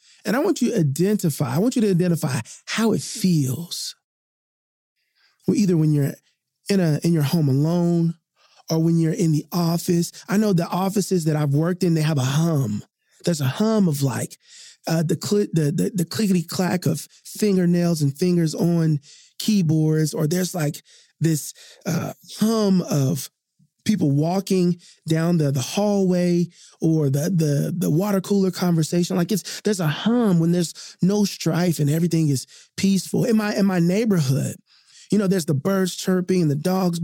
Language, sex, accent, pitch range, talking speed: English, male, American, 155-195 Hz, 175 wpm